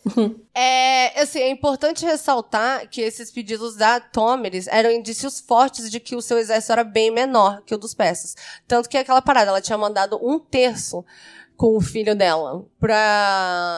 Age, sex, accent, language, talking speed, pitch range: 20-39, female, Brazilian, Portuguese, 170 wpm, 200-250 Hz